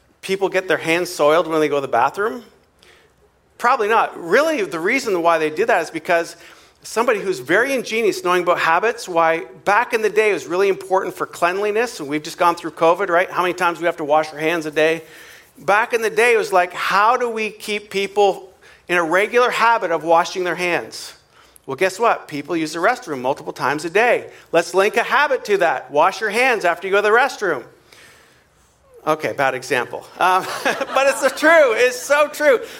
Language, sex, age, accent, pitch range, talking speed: English, male, 40-59, American, 170-250 Hz, 210 wpm